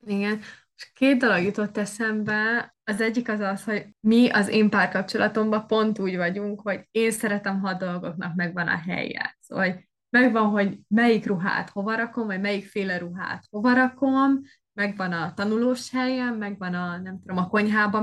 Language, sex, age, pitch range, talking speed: Hungarian, female, 20-39, 190-230 Hz, 165 wpm